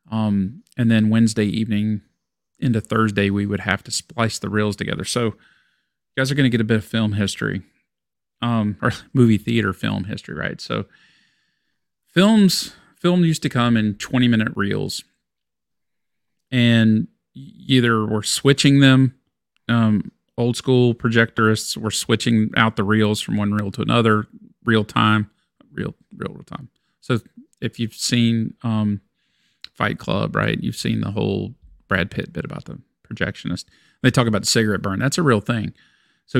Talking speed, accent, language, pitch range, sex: 160 wpm, American, English, 105-125 Hz, male